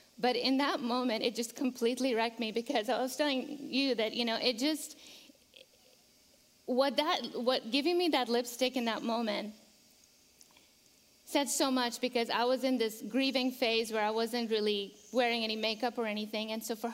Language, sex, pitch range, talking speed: English, female, 230-275 Hz, 180 wpm